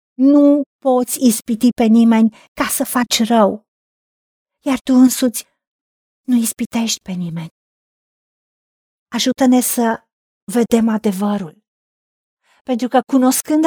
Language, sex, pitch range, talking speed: Romanian, female, 230-280 Hz, 100 wpm